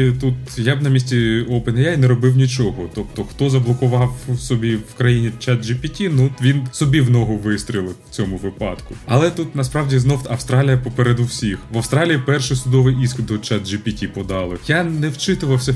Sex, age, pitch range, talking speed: male, 20-39, 125-145 Hz, 170 wpm